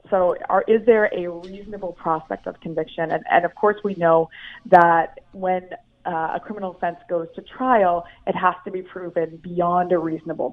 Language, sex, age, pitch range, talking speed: English, female, 20-39, 165-190 Hz, 175 wpm